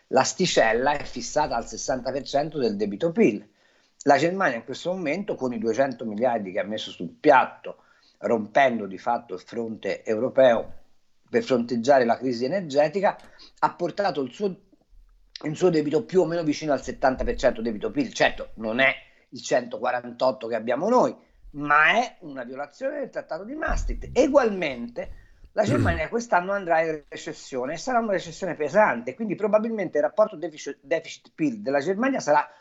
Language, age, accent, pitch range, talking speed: Italian, 50-69, native, 130-215 Hz, 160 wpm